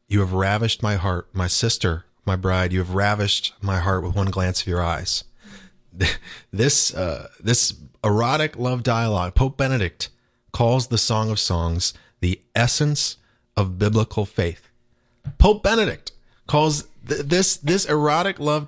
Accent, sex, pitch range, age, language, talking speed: American, male, 100-130 Hz, 30-49, English, 150 wpm